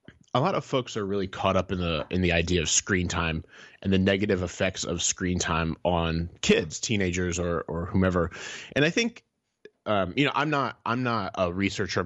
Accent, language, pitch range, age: American, English, 90-110 Hz, 30-49